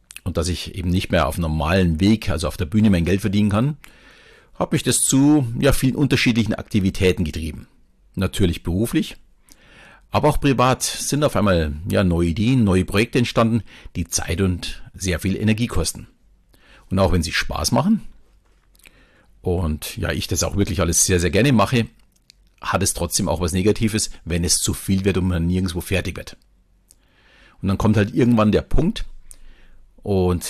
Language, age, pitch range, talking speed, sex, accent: German, 50-69, 90-110 Hz, 175 wpm, male, German